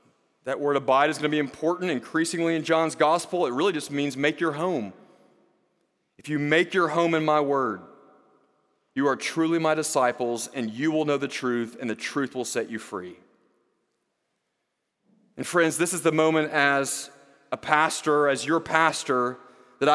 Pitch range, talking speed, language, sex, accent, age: 145-190 Hz, 175 wpm, English, male, American, 30-49